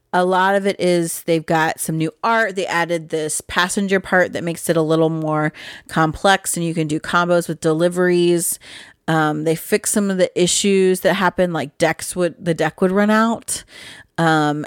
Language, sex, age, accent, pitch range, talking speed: English, female, 30-49, American, 160-200 Hz, 190 wpm